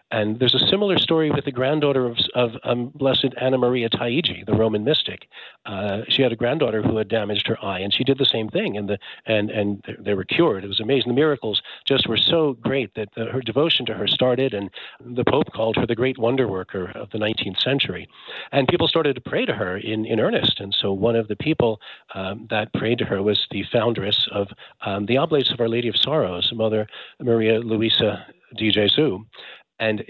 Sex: male